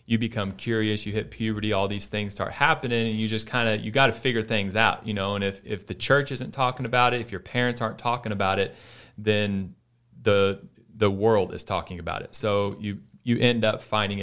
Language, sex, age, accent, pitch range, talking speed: English, male, 30-49, American, 100-120 Hz, 230 wpm